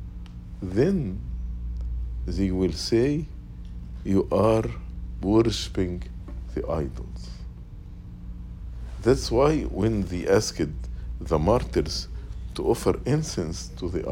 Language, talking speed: English, 90 wpm